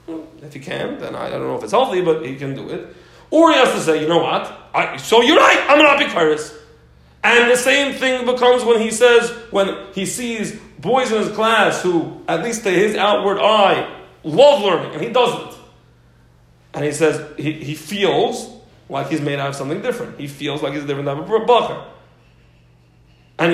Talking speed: 205 wpm